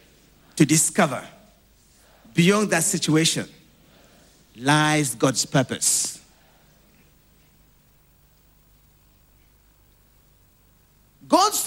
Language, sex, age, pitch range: English, male, 50-69, 140-225 Hz